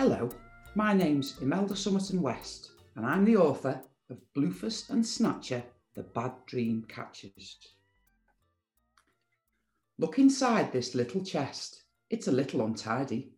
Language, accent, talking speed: English, British, 120 wpm